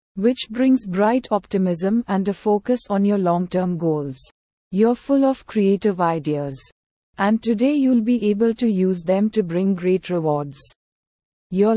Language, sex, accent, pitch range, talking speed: English, female, Indian, 180-225 Hz, 150 wpm